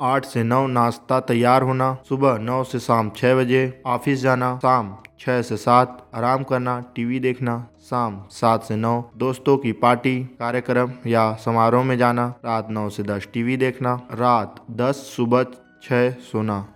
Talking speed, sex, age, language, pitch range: 160 wpm, male, 20-39, Hindi, 120-135 Hz